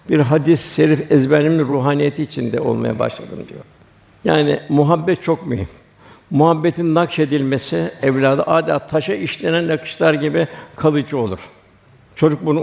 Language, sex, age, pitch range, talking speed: Turkish, male, 60-79, 135-160 Hz, 115 wpm